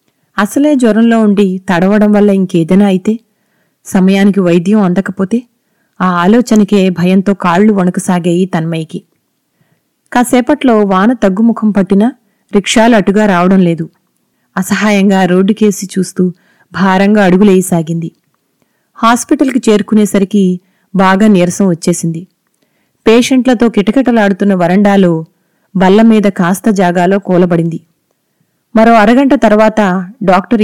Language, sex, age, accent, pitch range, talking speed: Telugu, female, 30-49, native, 180-215 Hz, 90 wpm